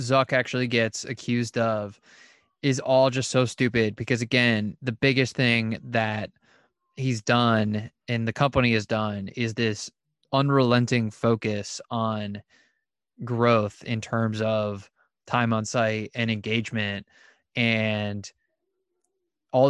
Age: 20-39